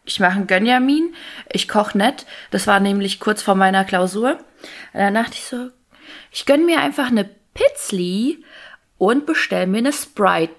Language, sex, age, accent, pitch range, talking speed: German, female, 20-39, German, 195-270 Hz, 165 wpm